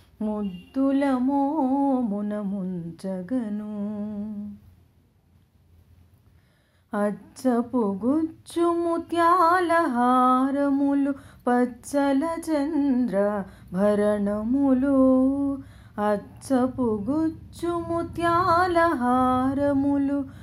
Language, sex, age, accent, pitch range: Telugu, female, 30-49, native, 210-335 Hz